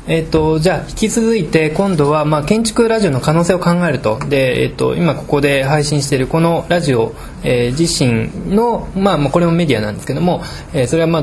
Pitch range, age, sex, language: 135-170 Hz, 20-39, male, Japanese